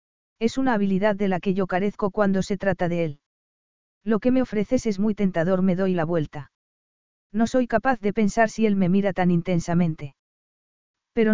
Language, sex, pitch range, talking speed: Spanish, female, 180-220 Hz, 190 wpm